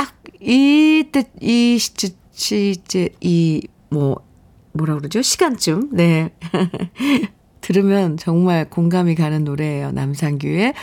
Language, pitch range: Korean, 165-235 Hz